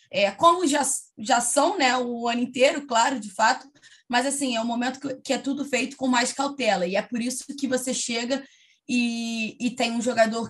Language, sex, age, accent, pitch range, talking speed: Portuguese, female, 20-39, Brazilian, 205-255 Hz, 195 wpm